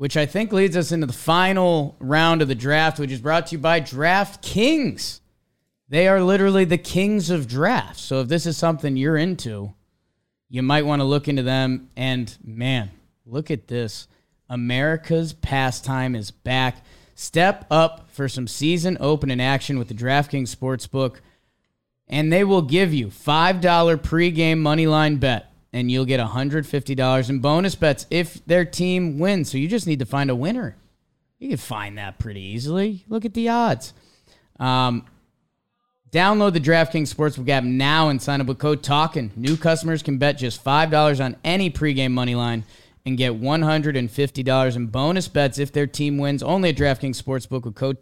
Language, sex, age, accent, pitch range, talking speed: English, male, 30-49, American, 130-165 Hz, 175 wpm